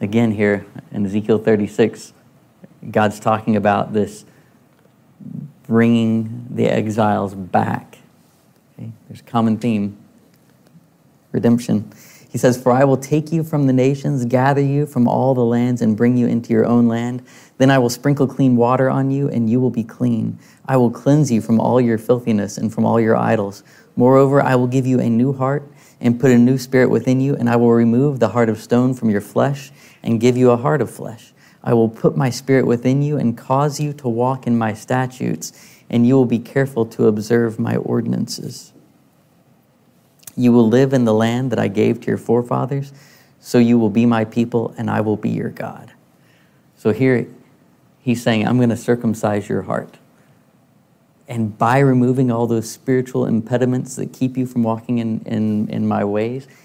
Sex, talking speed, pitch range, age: male, 185 wpm, 115-130 Hz, 30-49